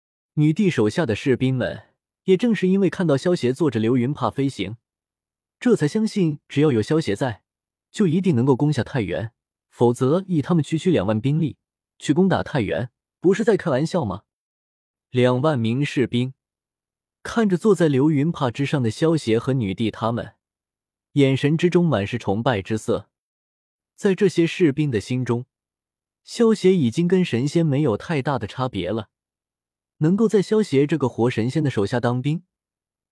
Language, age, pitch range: Chinese, 20-39, 115-165 Hz